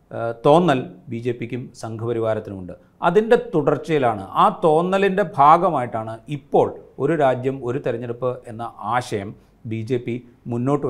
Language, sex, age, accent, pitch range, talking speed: Malayalam, male, 40-59, native, 120-150 Hz, 115 wpm